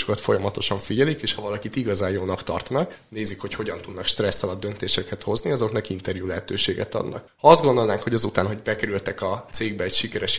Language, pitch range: Hungarian, 95-110 Hz